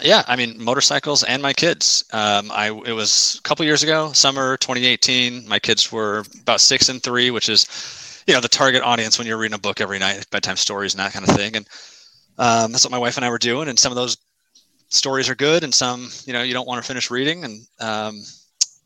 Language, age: English, 30-49